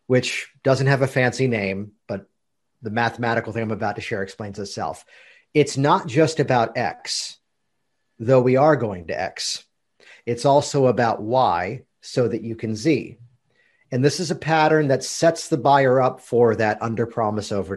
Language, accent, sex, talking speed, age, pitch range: English, American, male, 170 wpm, 40-59, 115-145 Hz